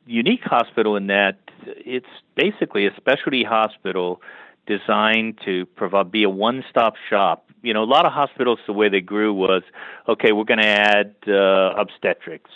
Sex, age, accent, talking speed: male, 40-59, American, 160 wpm